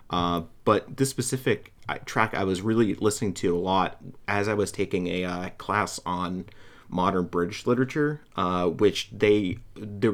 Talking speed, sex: 160 wpm, male